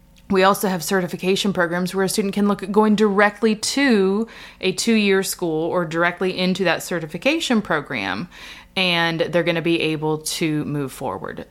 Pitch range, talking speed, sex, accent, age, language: 160-200 Hz, 165 wpm, female, American, 20-39, English